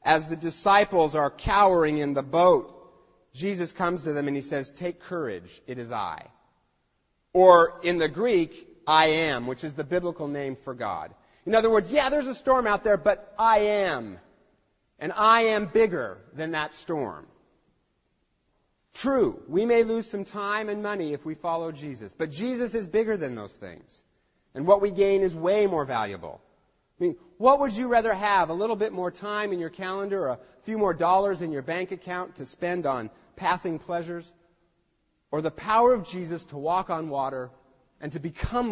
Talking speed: 185 wpm